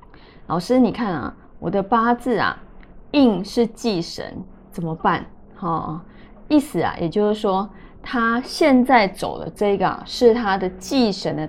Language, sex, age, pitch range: Chinese, female, 20-39, 190-250 Hz